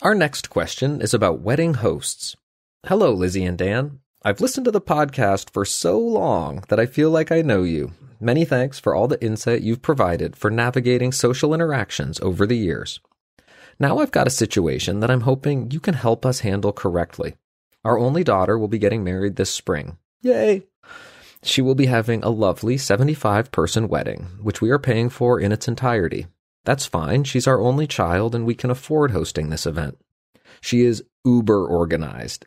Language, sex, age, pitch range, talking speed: English, male, 30-49, 95-130 Hz, 180 wpm